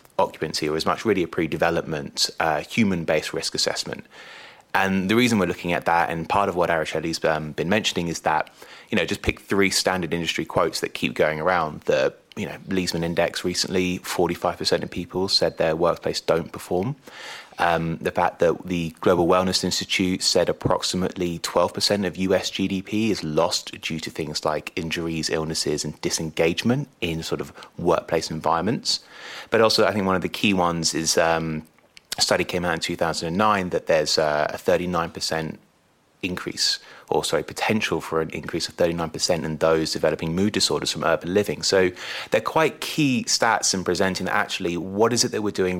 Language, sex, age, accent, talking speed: English, male, 30-49, British, 180 wpm